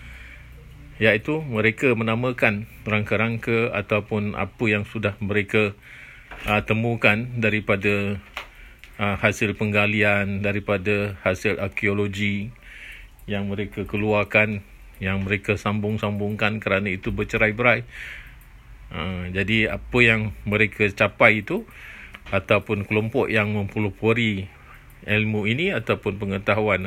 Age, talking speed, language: 40-59, 95 wpm, Malay